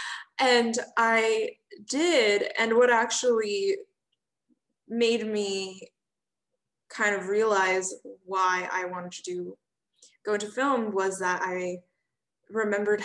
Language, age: English, 20-39